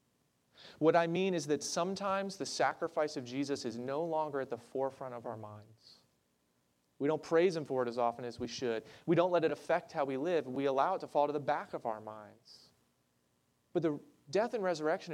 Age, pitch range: 30-49, 110-160 Hz